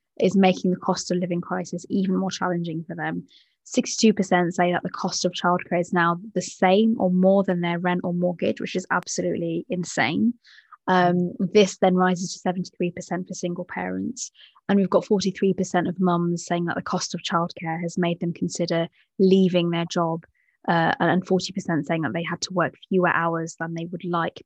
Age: 20-39